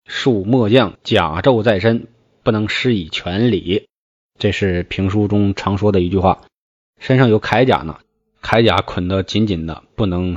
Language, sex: Chinese, male